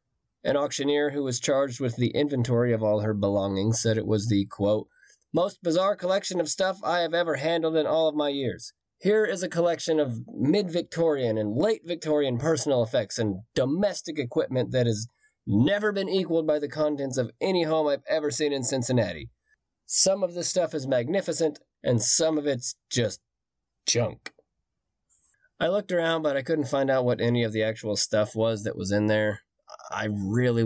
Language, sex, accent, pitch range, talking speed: English, male, American, 110-155 Hz, 180 wpm